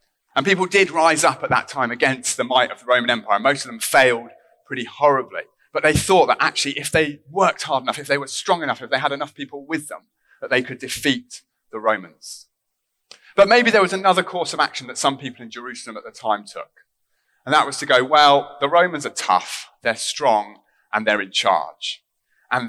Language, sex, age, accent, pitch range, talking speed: English, male, 30-49, British, 130-185 Hz, 220 wpm